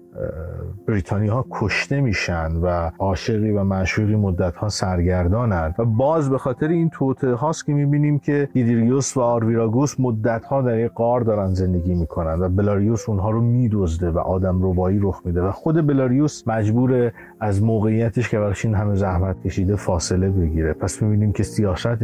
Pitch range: 95-125 Hz